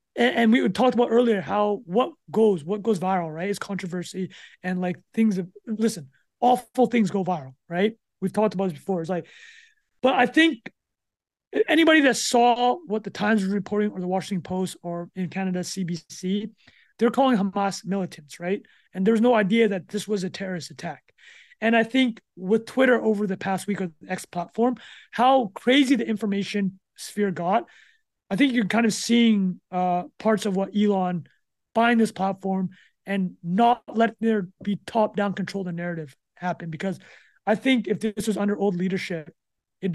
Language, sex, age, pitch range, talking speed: English, male, 20-39, 180-225 Hz, 180 wpm